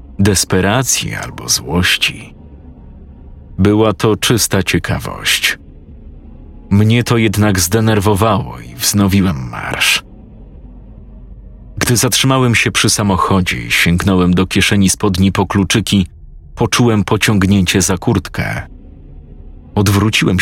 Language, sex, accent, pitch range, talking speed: Polish, male, native, 90-110 Hz, 90 wpm